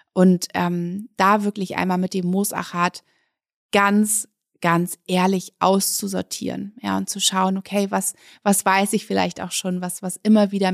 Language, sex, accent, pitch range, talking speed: German, female, German, 190-215 Hz, 155 wpm